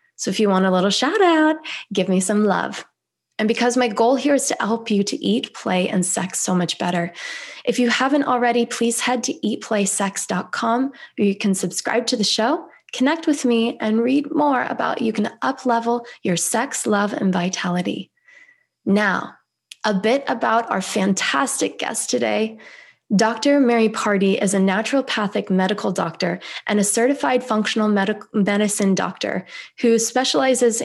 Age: 20-39